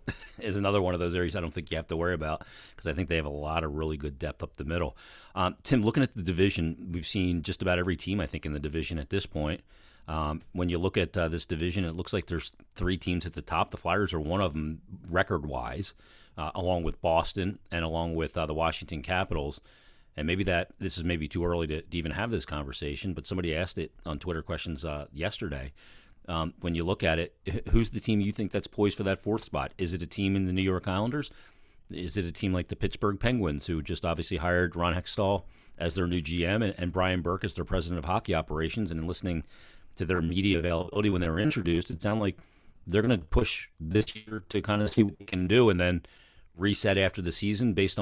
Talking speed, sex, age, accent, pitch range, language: 240 wpm, male, 40-59, American, 80-100 Hz, English